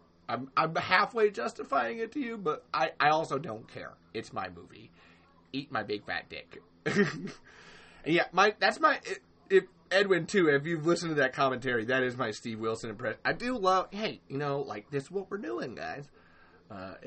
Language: English